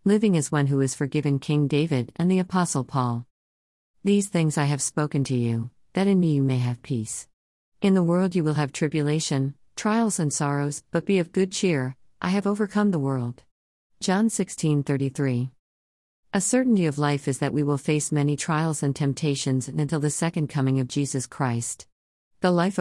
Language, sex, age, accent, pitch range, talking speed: English, female, 50-69, American, 135-160 Hz, 185 wpm